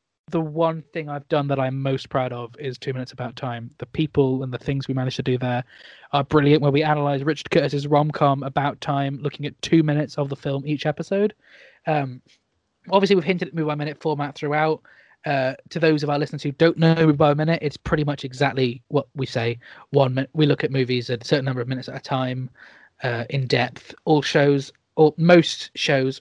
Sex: male